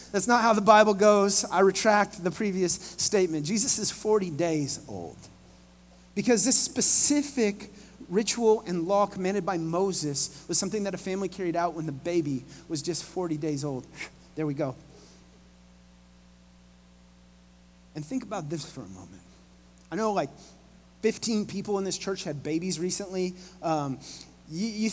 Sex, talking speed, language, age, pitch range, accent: male, 150 wpm, English, 30-49, 170-230 Hz, American